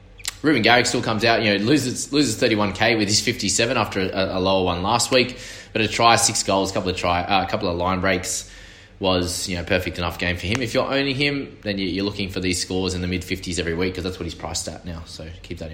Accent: Australian